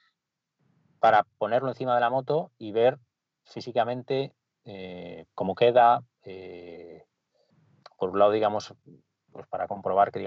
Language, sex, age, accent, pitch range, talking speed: Spanish, male, 30-49, Spanish, 95-130 Hz, 115 wpm